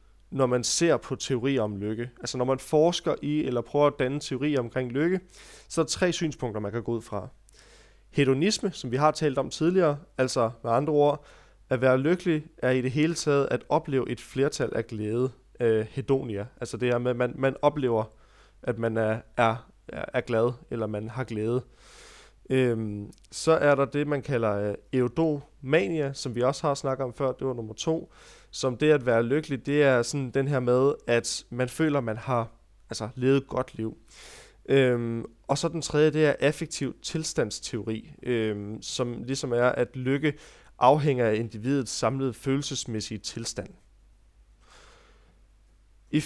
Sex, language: male, Danish